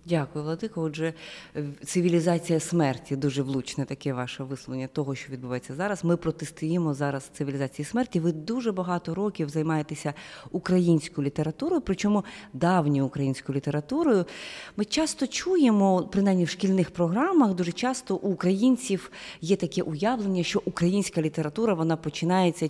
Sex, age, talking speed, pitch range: female, 30-49, 130 wpm, 155-195 Hz